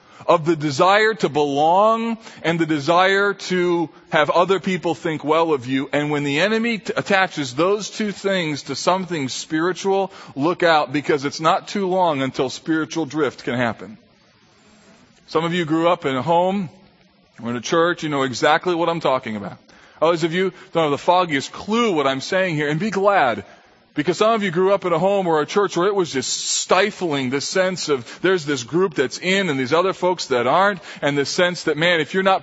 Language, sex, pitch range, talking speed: English, male, 160-200 Hz, 205 wpm